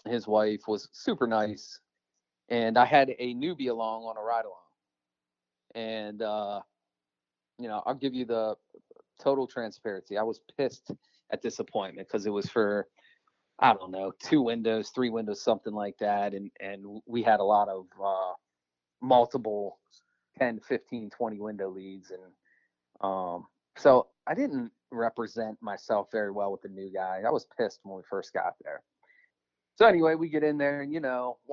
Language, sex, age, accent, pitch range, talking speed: English, male, 30-49, American, 100-125 Hz, 170 wpm